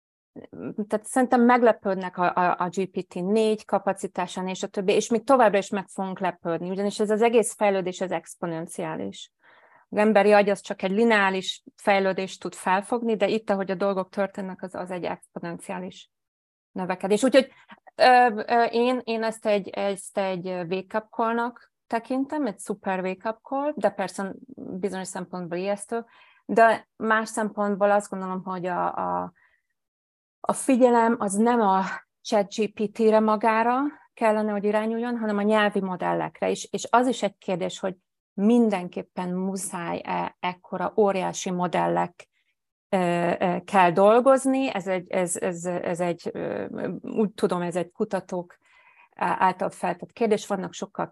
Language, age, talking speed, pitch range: Hungarian, 30-49, 140 wpm, 185-220 Hz